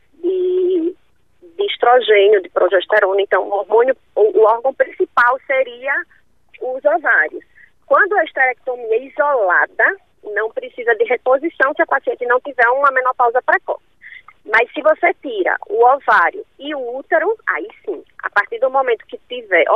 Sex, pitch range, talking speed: female, 245-370 Hz, 145 wpm